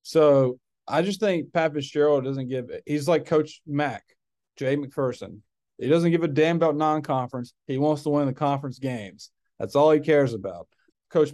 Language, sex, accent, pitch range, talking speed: English, male, American, 120-145 Hz, 185 wpm